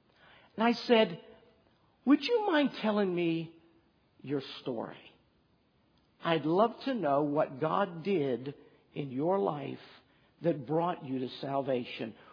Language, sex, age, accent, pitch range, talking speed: English, male, 60-79, American, 145-200 Hz, 120 wpm